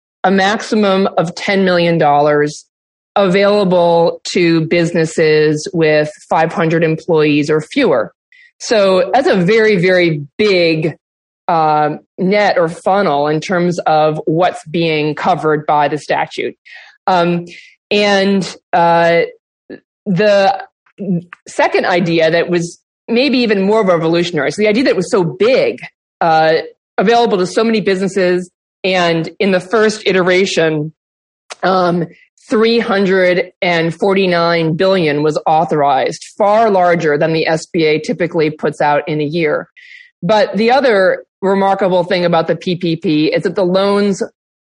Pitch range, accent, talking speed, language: 165-200 Hz, American, 120 wpm, English